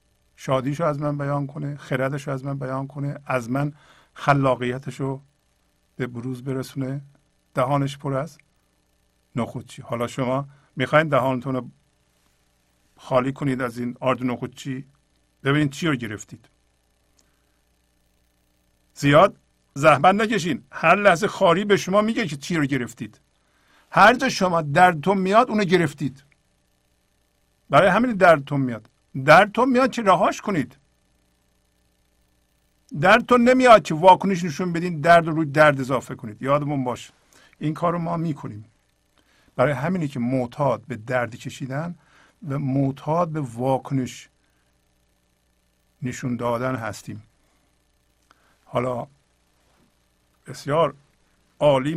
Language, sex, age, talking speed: English, male, 50-69, 115 wpm